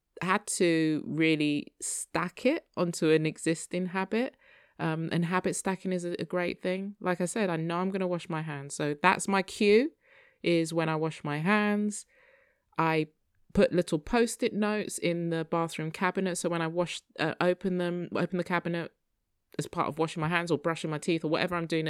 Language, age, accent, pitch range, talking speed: English, 20-39, British, 145-180 Hz, 195 wpm